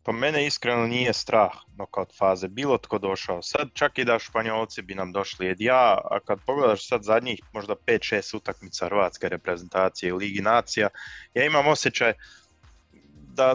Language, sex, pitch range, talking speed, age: Croatian, male, 95-115 Hz, 170 wpm, 20-39